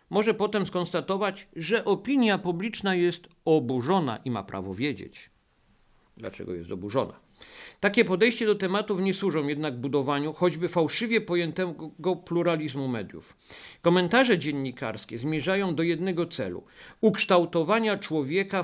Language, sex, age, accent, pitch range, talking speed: Polish, male, 50-69, native, 140-190 Hz, 115 wpm